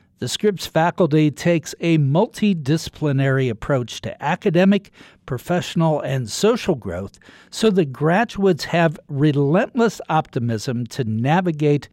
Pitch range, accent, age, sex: 125-180 Hz, American, 60-79, male